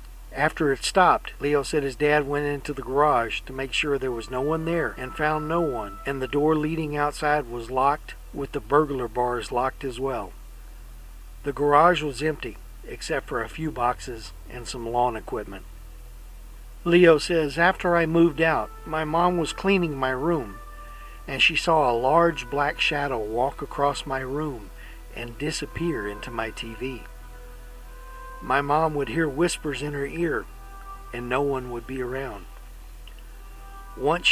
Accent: American